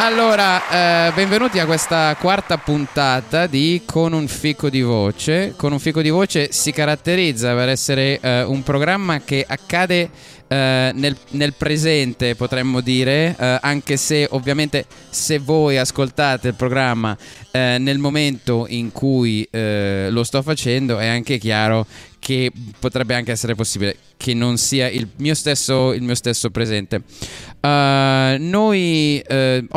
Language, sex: Italian, male